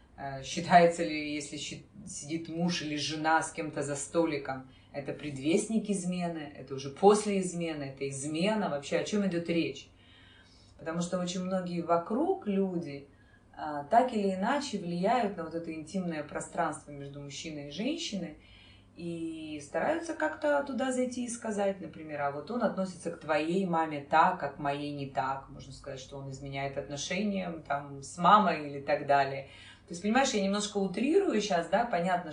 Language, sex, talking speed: Russian, female, 160 wpm